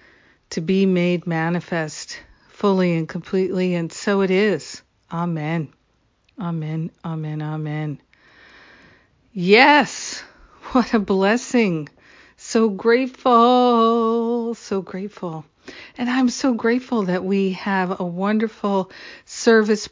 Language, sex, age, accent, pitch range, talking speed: English, female, 50-69, American, 170-200 Hz, 100 wpm